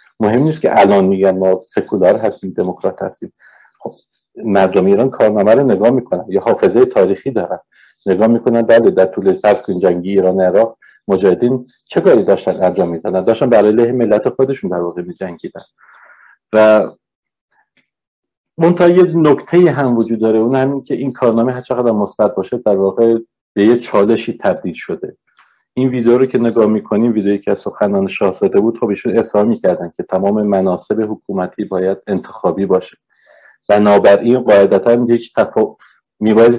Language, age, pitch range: Persian, 50-69, 100-125 Hz